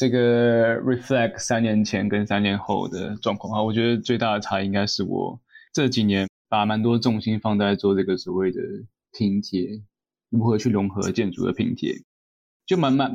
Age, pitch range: 20-39, 100-115 Hz